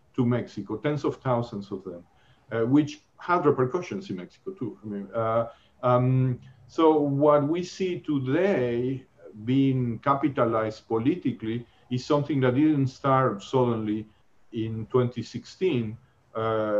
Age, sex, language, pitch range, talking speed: 50-69, male, English, 115-140 Hz, 120 wpm